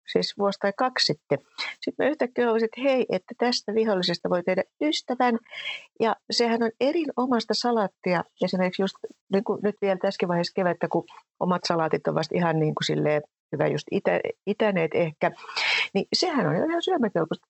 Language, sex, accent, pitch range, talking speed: Finnish, female, native, 165-240 Hz, 160 wpm